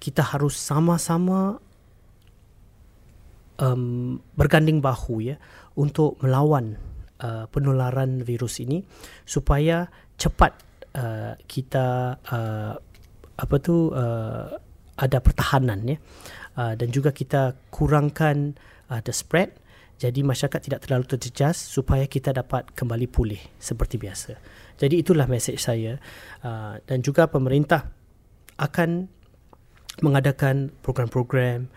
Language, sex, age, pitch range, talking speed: Malay, male, 30-49, 115-145 Hz, 105 wpm